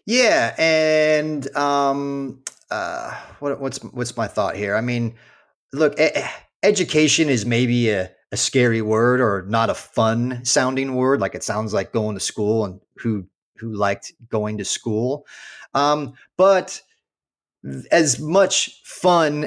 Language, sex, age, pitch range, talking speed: English, male, 30-49, 115-140 Hz, 140 wpm